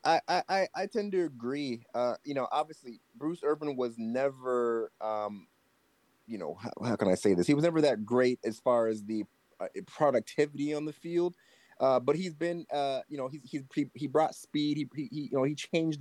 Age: 30-49